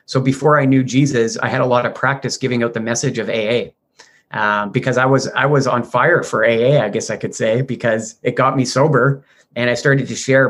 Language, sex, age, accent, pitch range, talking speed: English, male, 30-49, American, 120-140 Hz, 240 wpm